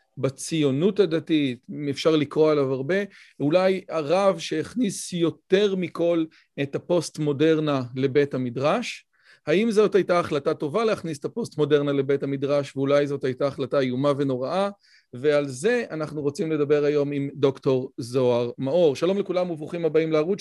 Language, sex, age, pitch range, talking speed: Hebrew, male, 40-59, 145-180 Hz, 145 wpm